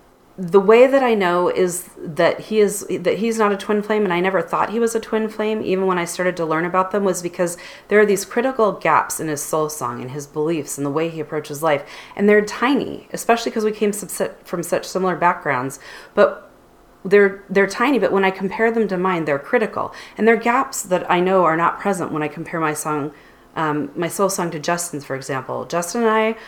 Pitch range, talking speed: 155-195 Hz, 230 wpm